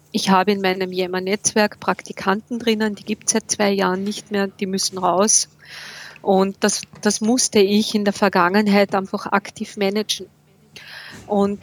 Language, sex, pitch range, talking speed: German, female, 190-210 Hz, 155 wpm